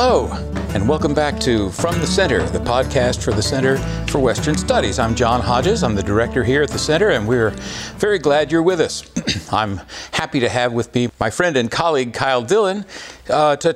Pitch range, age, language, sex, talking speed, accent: 110-150 Hz, 60-79, English, male, 205 wpm, American